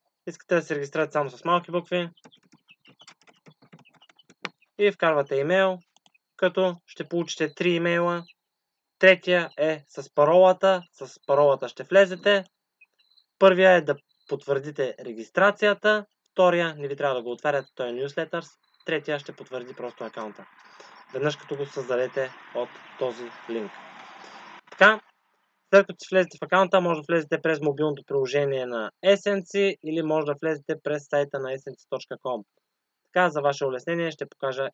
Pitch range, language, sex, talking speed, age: 140-185 Hz, English, male, 135 wpm, 20-39